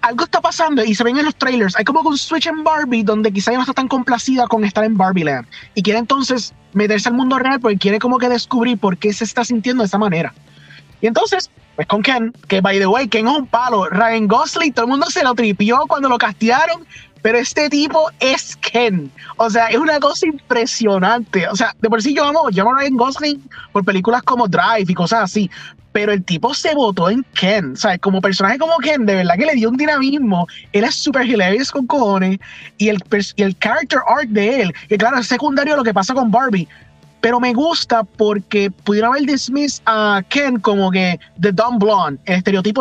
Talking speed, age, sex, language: 225 wpm, 20-39, male, Spanish